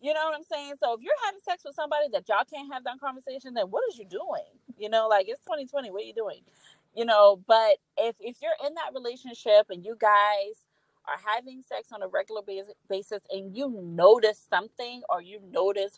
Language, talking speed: English, 220 wpm